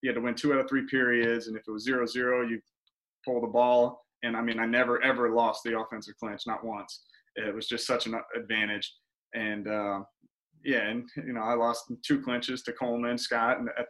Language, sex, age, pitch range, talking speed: English, male, 20-39, 115-125 Hz, 210 wpm